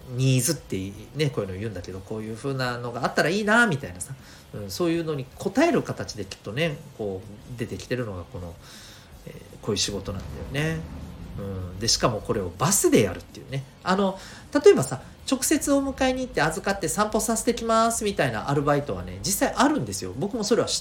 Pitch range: 95-145 Hz